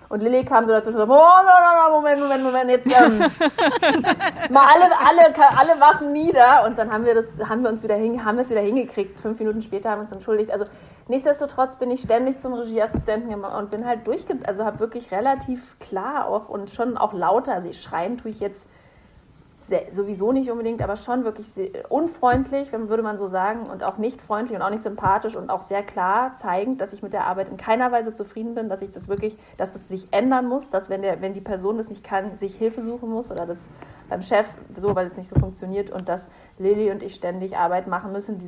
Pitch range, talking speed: 190-245 Hz, 230 wpm